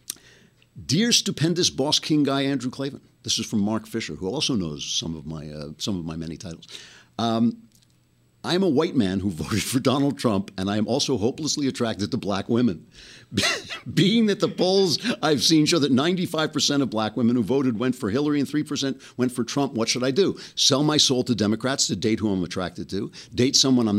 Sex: male